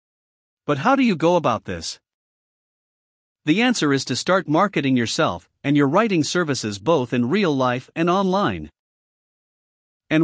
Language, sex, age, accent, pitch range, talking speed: English, male, 50-69, American, 125-180 Hz, 145 wpm